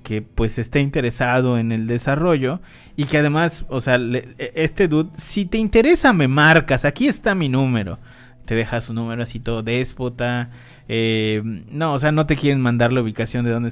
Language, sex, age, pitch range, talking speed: Spanish, male, 30-49, 115-150 Hz, 190 wpm